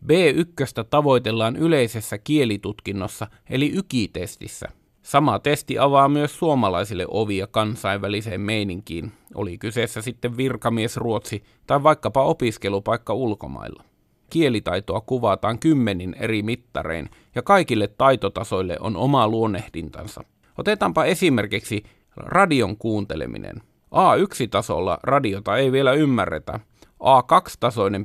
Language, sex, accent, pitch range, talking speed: Finnish, male, native, 105-135 Hz, 95 wpm